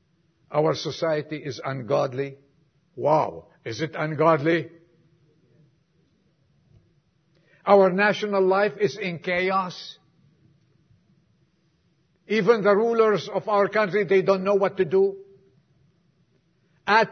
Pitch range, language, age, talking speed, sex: 155-195 Hz, English, 50-69, 95 wpm, male